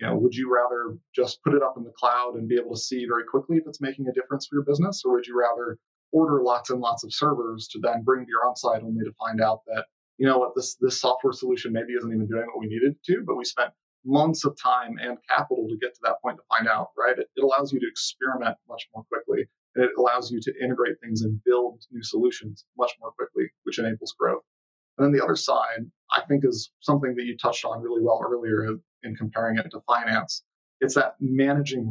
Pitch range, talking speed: 115-140 Hz, 245 wpm